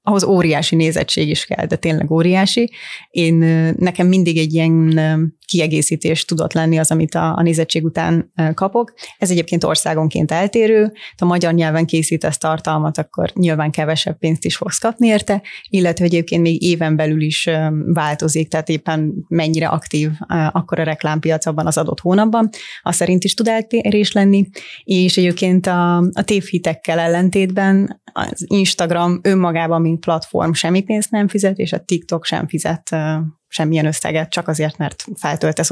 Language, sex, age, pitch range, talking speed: Hungarian, female, 30-49, 160-190 Hz, 150 wpm